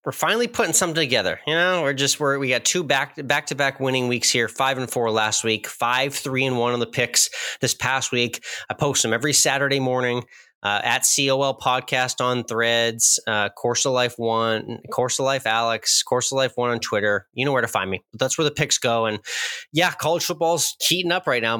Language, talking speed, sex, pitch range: English, 220 wpm, male, 115-140 Hz